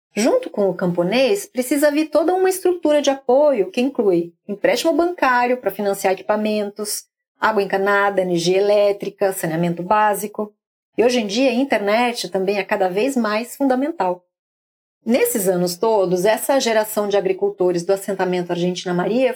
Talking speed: 145 wpm